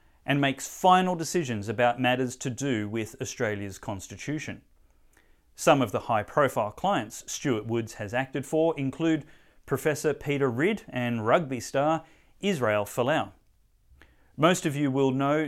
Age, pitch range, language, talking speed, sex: 30-49, 110-155 Hz, English, 135 wpm, male